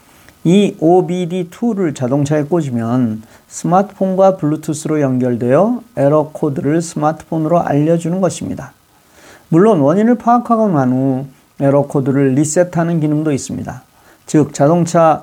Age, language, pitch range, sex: 40-59, Korean, 135-180 Hz, male